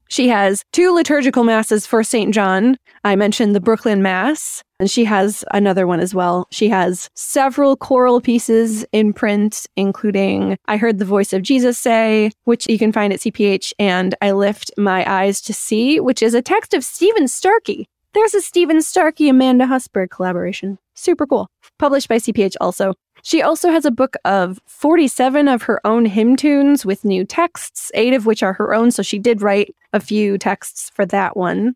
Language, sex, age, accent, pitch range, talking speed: English, female, 20-39, American, 195-250 Hz, 185 wpm